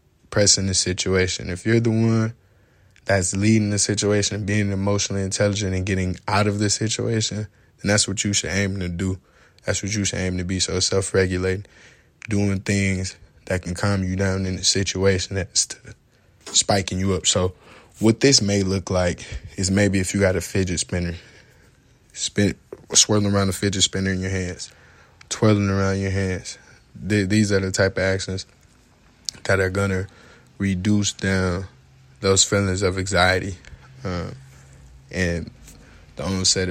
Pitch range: 90-100 Hz